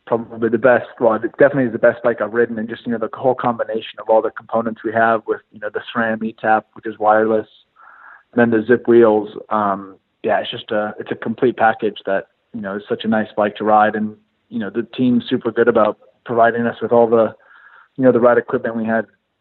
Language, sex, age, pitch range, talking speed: English, male, 20-39, 110-120 Hz, 240 wpm